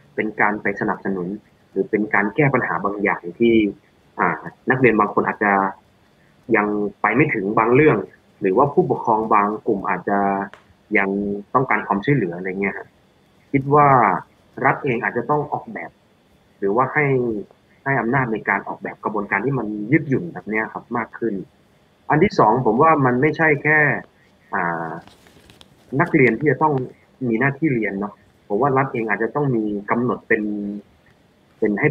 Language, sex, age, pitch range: Thai, male, 20-39, 105-135 Hz